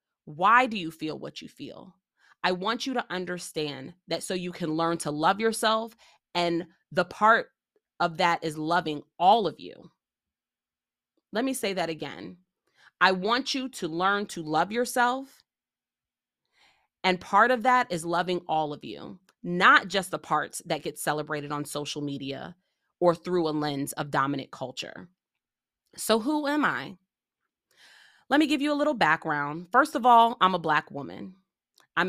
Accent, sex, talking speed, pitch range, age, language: American, female, 165 wpm, 155-225 Hz, 30-49, English